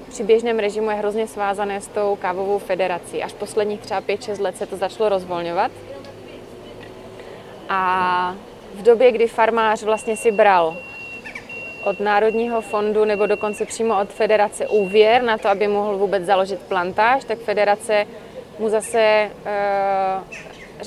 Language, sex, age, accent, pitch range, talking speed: Czech, female, 20-39, native, 195-220 Hz, 140 wpm